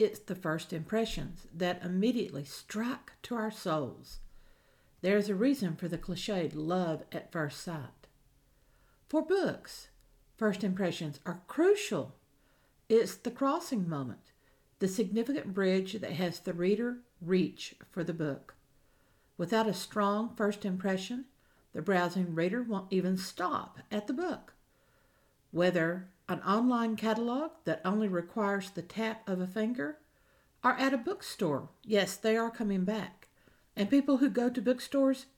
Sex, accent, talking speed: female, American, 140 wpm